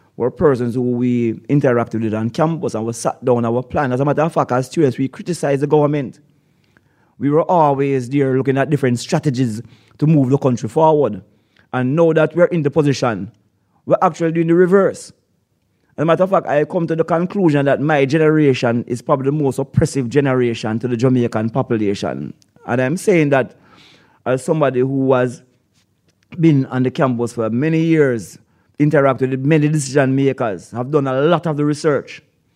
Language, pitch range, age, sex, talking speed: English, 125-160 Hz, 30-49, male, 185 wpm